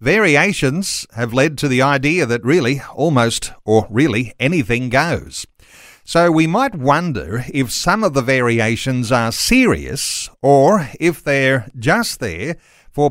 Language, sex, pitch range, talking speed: English, male, 125-165 Hz, 135 wpm